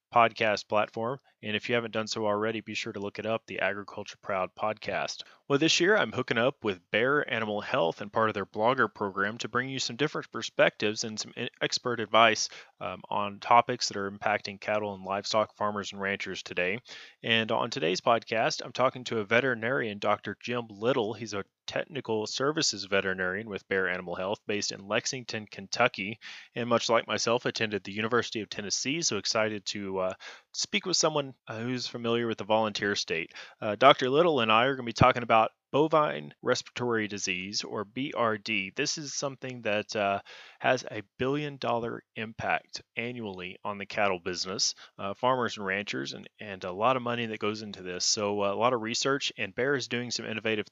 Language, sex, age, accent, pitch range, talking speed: English, male, 30-49, American, 105-120 Hz, 190 wpm